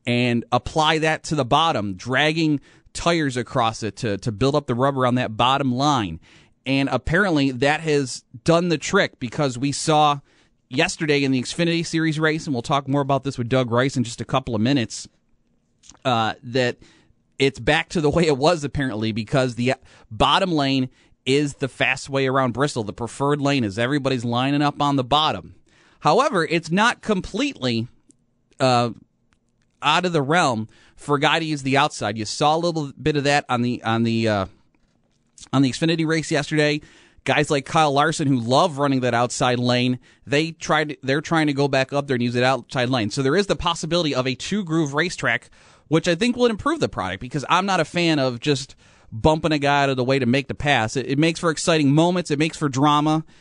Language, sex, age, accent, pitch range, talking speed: English, male, 30-49, American, 125-155 Hz, 205 wpm